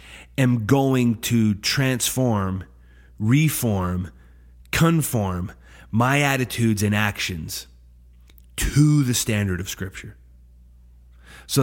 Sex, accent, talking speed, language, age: male, American, 85 wpm, English, 30-49